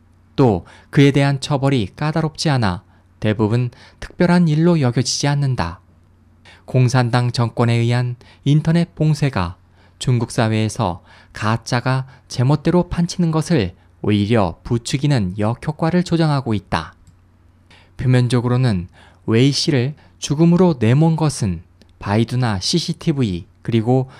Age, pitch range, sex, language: 20-39, 95-145 Hz, male, Korean